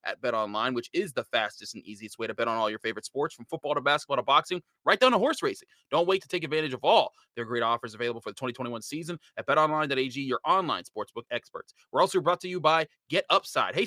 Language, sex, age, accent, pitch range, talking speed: English, male, 30-49, American, 125-175 Hz, 240 wpm